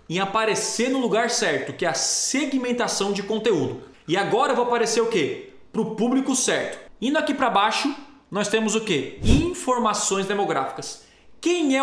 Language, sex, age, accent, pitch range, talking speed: Portuguese, male, 20-39, Brazilian, 180-250 Hz, 170 wpm